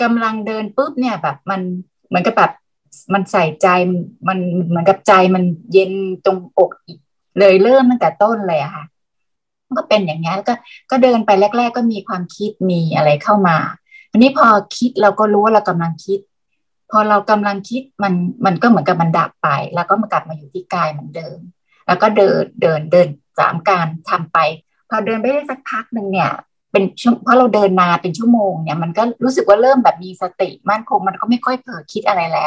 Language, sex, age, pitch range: Thai, female, 20-39, 180-225 Hz